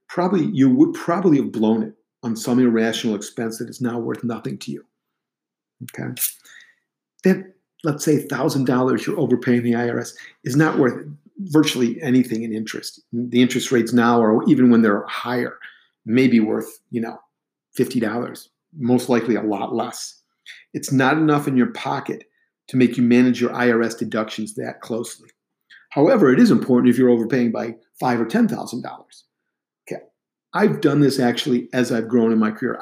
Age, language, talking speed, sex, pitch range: 50-69, English, 165 wpm, male, 115-140 Hz